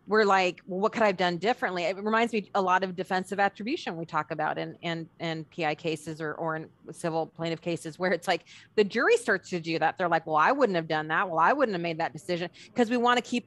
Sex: female